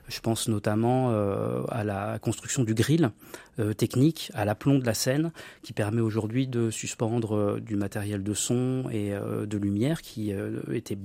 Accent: French